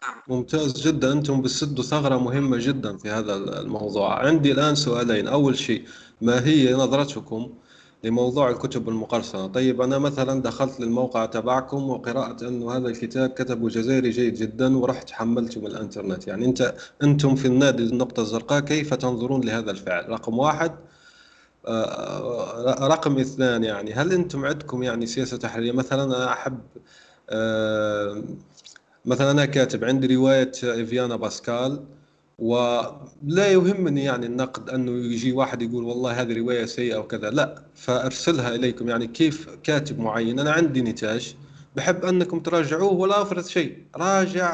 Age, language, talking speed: 30-49, Arabic, 140 wpm